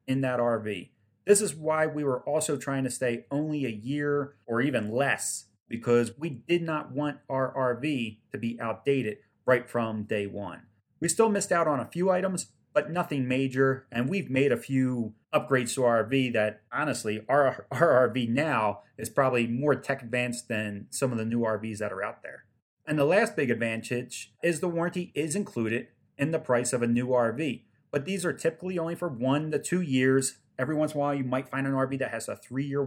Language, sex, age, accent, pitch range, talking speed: English, male, 30-49, American, 115-155 Hz, 210 wpm